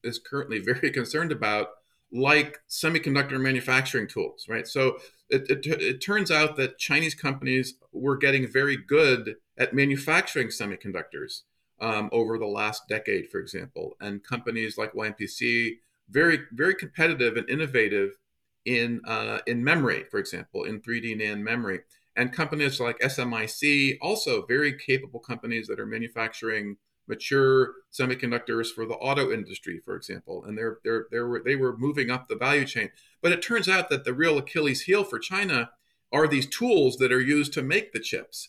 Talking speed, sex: 160 wpm, male